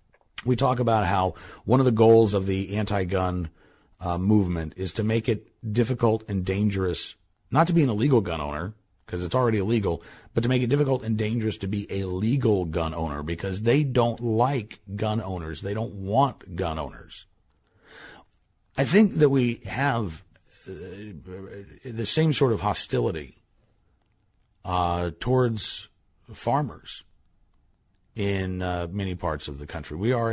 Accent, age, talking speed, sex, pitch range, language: American, 50-69, 150 wpm, male, 85-110 Hz, English